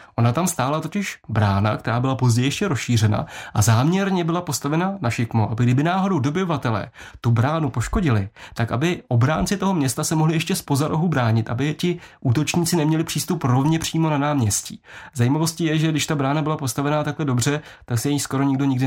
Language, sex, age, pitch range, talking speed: Czech, male, 30-49, 120-155 Hz, 190 wpm